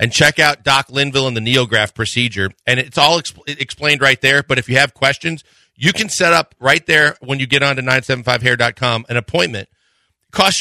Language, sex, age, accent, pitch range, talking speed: English, male, 40-59, American, 115-145 Hz, 200 wpm